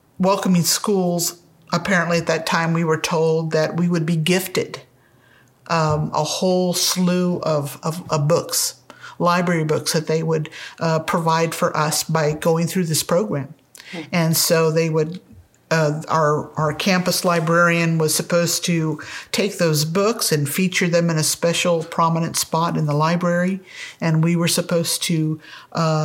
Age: 50-69